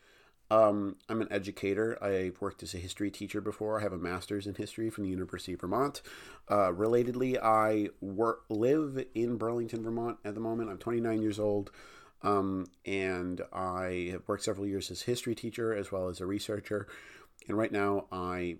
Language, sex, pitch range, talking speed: English, male, 95-115 Hz, 180 wpm